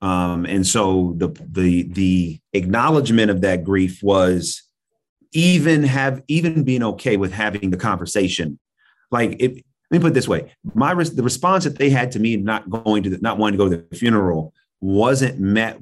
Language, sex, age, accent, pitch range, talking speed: English, male, 30-49, American, 95-115 Hz, 190 wpm